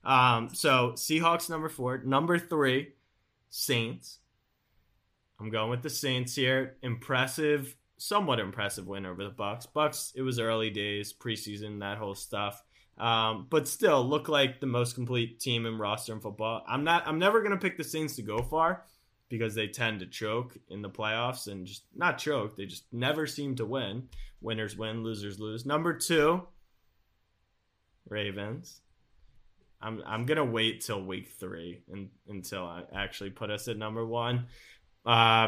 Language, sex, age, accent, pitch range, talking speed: English, male, 20-39, American, 105-140 Hz, 165 wpm